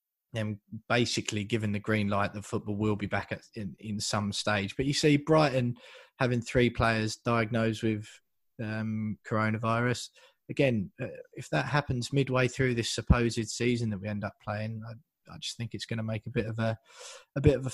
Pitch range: 110-130 Hz